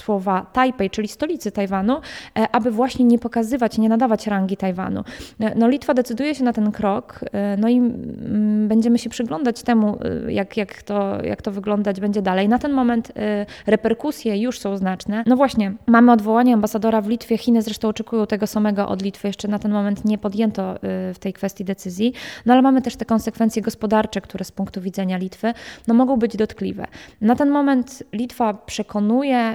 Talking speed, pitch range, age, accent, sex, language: 175 wpm, 200-245 Hz, 20-39, native, female, Polish